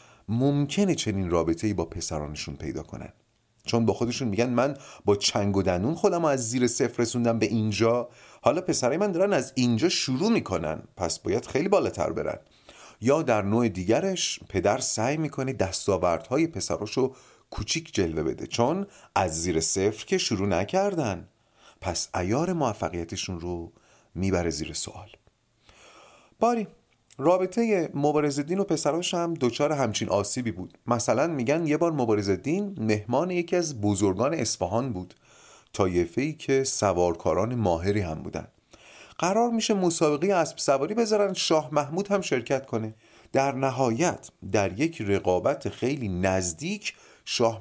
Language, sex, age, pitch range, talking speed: Persian, male, 30-49, 105-165 Hz, 140 wpm